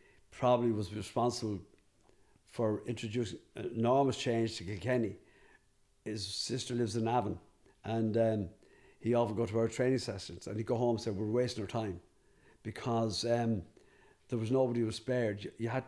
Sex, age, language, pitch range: male, 50-69, English, 110-125 Hz